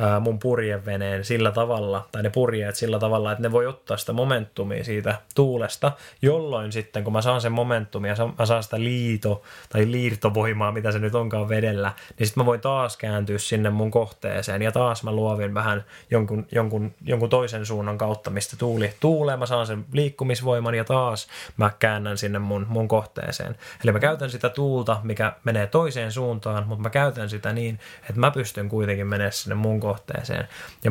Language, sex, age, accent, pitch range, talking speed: Finnish, male, 20-39, native, 105-125 Hz, 180 wpm